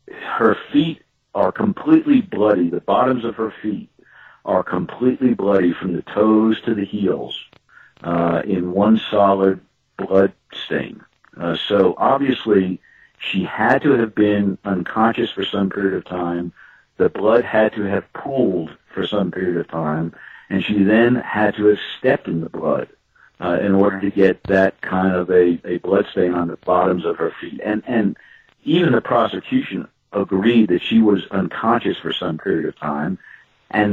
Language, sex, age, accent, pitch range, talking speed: English, male, 60-79, American, 95-110 Hz, 165 wpm